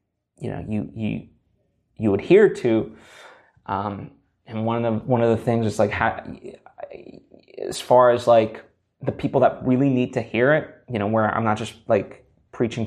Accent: American